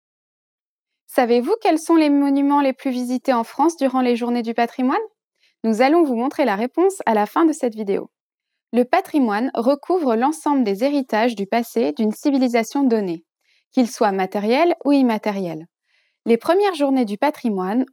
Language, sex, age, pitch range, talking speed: English, female, 20-39, 220-285 Hz, 160 wpm